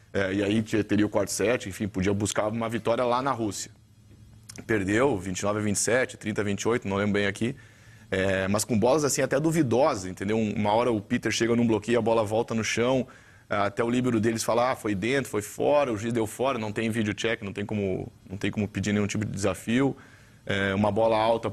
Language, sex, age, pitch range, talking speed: Portuguese, male, 20-39, 105-120 Hz, 220 wpm